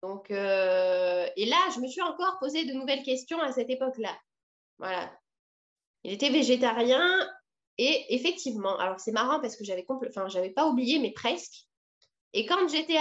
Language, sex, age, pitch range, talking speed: French, female, 20-39, 215-285 Hz, 165 wpm